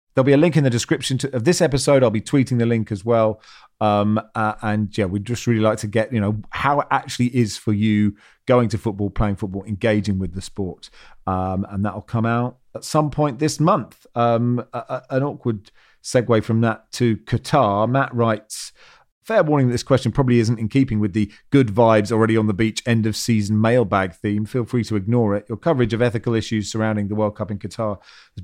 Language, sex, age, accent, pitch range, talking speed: English, male, 40-59, British, 110-130 Hz, 215 wpm